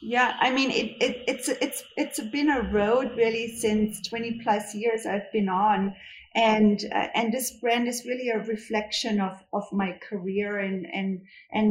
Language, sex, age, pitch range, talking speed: English, female, 30-49, 195-230 Hz, 180 wpm